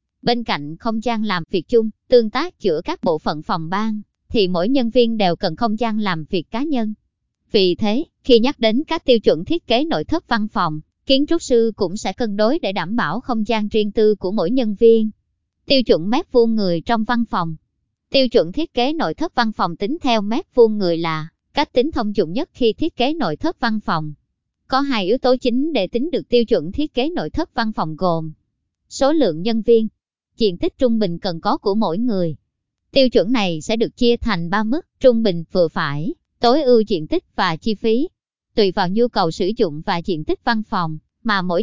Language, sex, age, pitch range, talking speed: Vietnamese, male, 20-39, 185-255 Hz, 225 wpm